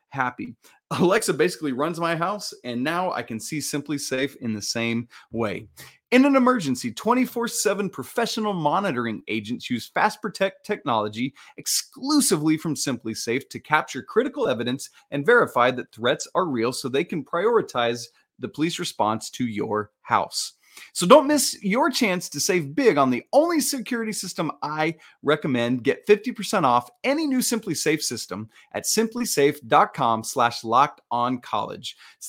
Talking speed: 145 wpm